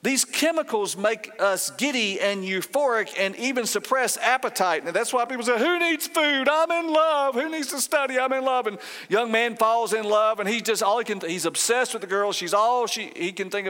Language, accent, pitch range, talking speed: English, American, 195-260 Hz, 225 wpm